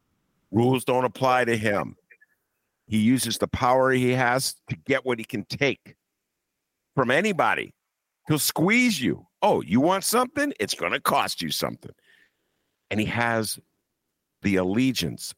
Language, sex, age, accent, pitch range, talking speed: English, male, 50-69, American, 100-165 Hz, 145 wpm